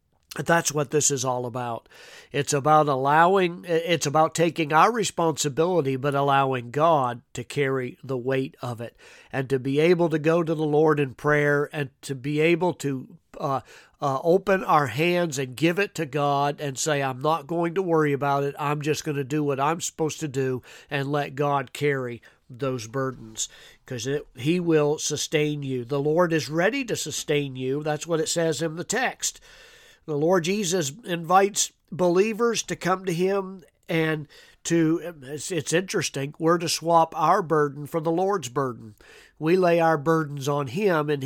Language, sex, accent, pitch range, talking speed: English, male, American, 140-165 Hz, 180 wpm